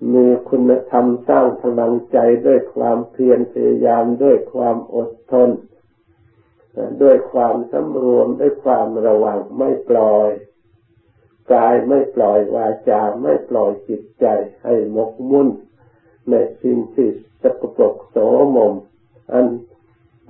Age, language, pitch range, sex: 60-79, Thai, 110-150 Hz, male